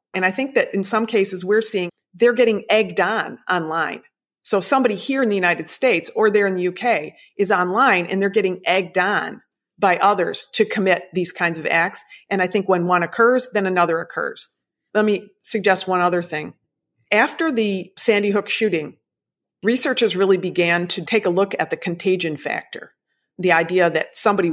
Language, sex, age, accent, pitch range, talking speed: English, female, 40-59, American, 170-210 Hz, 185 wpm